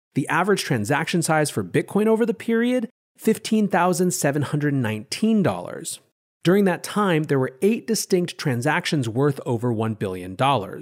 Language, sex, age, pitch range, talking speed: English, male, 30-49, 125-175 Hz, 120 wpm